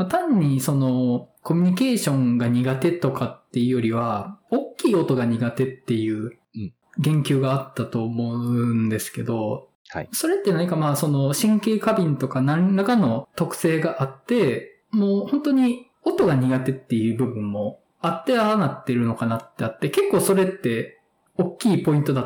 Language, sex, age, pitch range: Japanese, male, 20-39, 120-185 Hz